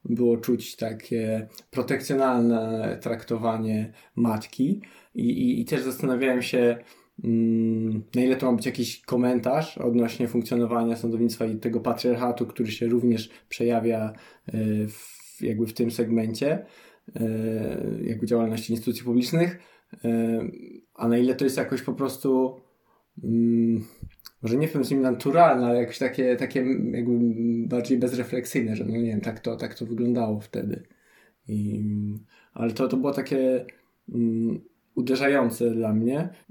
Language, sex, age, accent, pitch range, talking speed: Polish, male, 20-39, native, 115-130 Hz, 140 wpm